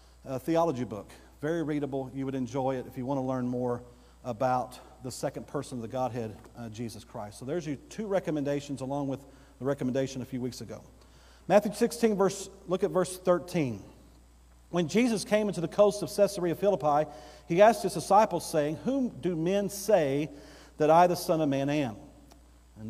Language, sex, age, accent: English, male, 40-59, American